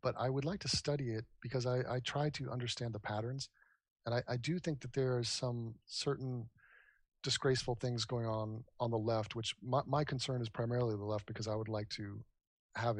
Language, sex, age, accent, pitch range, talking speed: English, male, 30-49, American, 110-135 Hz, 210 wpm